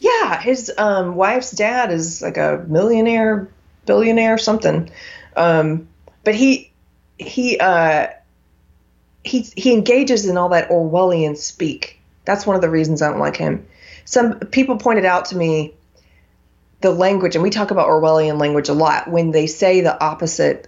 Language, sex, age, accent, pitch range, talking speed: English, female, 30-49, American, 160-205 Hz, 160 wpm